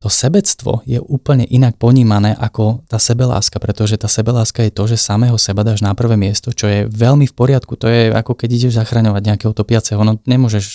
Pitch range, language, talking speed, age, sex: 105-120 Hz, Slovak, 200 wpm, 20-39, male